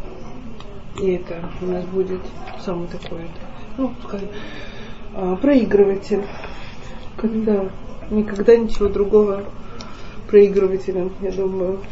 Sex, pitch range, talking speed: female, 205-225 Hz, 85 wpm